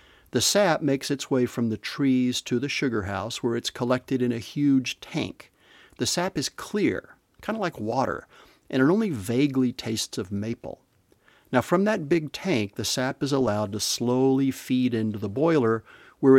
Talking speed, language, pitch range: 185 wpm, English, 110-135 Hz